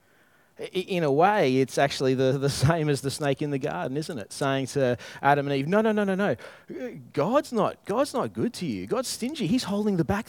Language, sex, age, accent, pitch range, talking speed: English, male, 30-49, Australian, 135-185 Hz, 215 wpm